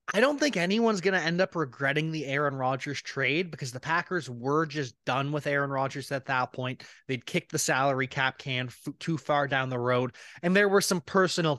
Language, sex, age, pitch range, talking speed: English, male, 20-39, 125-160 Hz, 210 wpm